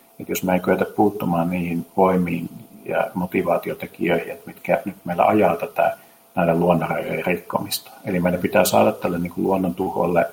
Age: 50-69